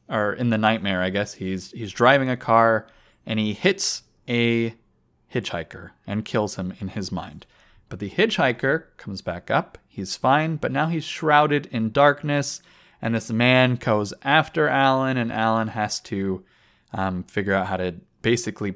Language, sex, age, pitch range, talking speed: English, male, 20-39, 95-130 Hz, 165 wpm